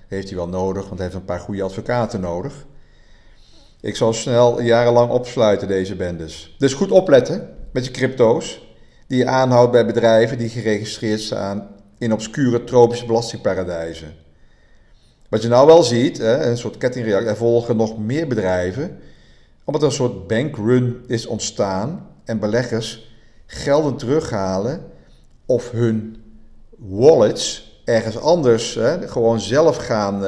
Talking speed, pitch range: 140 wpm, 95-120 Hz